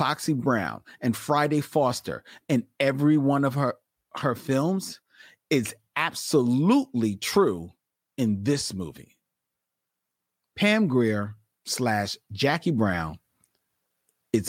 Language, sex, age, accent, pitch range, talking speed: English, male, 40-59, American, 95-130 Hz, 100 wpm